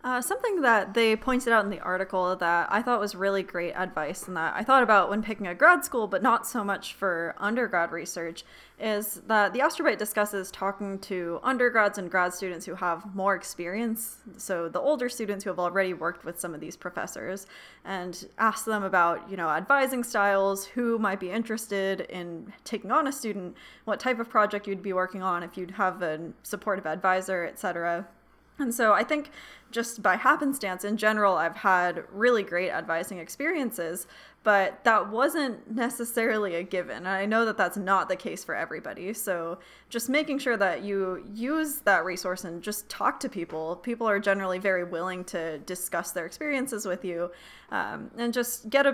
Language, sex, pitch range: English, female, 180-230 Hz